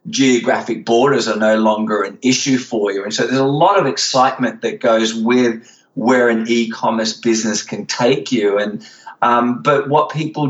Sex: male